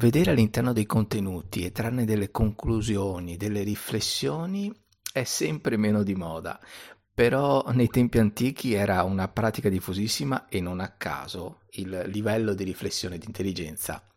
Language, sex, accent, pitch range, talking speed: Italian, male, native, 90-125 Hz, 145 wpm